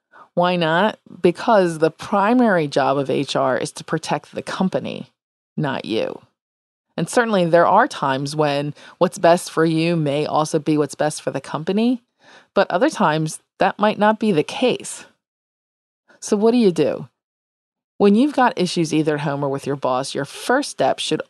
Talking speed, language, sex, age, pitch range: 175 wpm, English, female, 30-49, 155-220 Hz